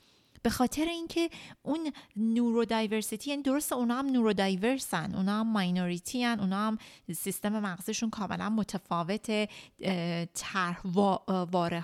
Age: 30-49